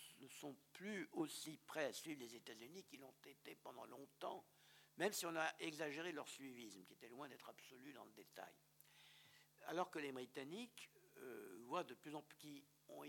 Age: 60-79